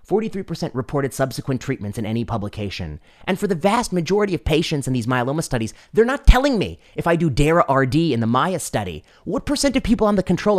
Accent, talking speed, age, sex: American, 215 wpm, 30-49, male